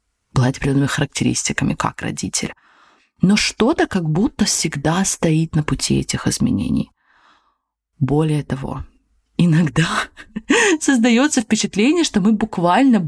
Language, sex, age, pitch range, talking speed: Russian, female, 20-39, 145-205 Hz, 105 wpm